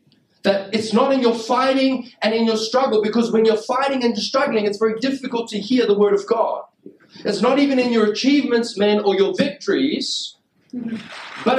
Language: English